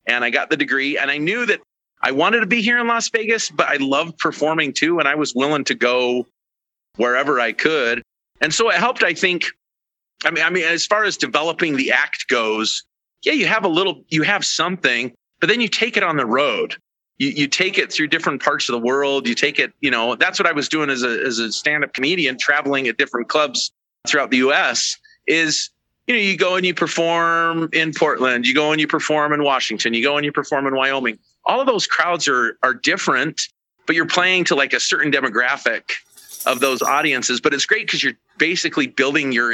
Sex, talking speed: male, 225 wpm